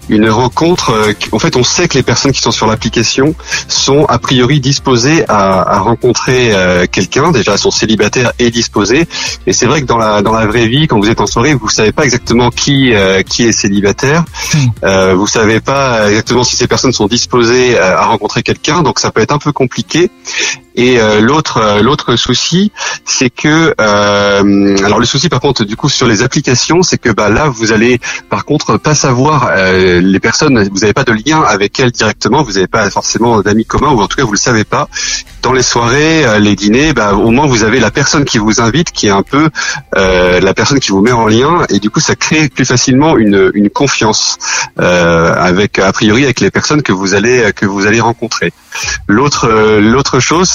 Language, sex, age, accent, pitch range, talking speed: French, male, 30-49, French, 105-135 Hz, 215 wpm